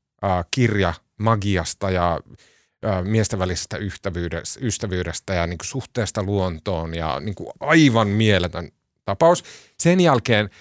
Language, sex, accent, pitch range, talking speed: Finnish, male, native, 90-125 Hz, 95 wpm